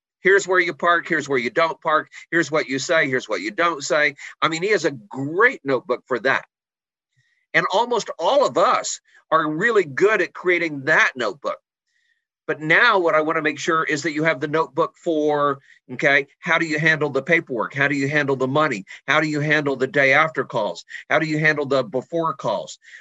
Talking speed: 210 wpm